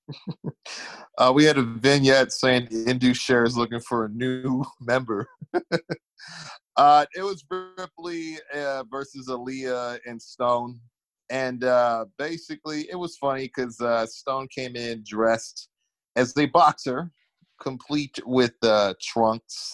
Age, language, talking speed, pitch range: 30-49, English, 125 wpm, 115-140 Hz